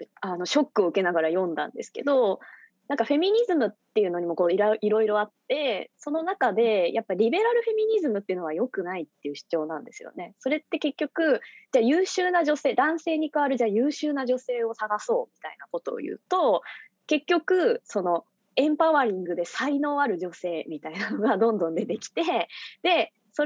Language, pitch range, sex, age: Japanese, 210-320 Hz, female, 20-39